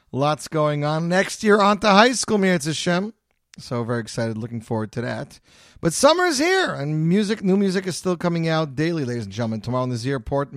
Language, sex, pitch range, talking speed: English, male, 125-190 Hz, 220 wpm